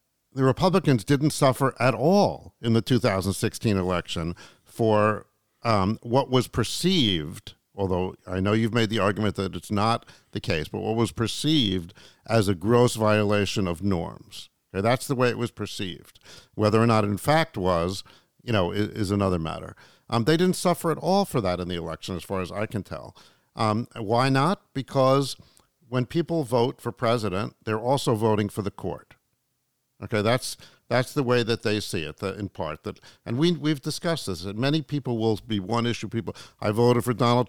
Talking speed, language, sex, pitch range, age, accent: 185 wpm, English, male, 100-130 Hz, 50-69, American